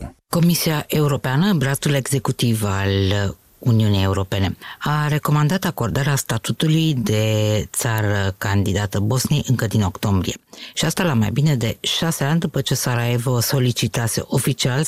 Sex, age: female, 50-69